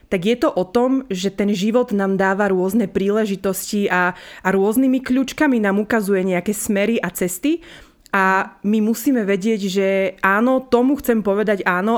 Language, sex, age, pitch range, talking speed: Slovak, female, 20-39, 190-230 Hz, 160 wpm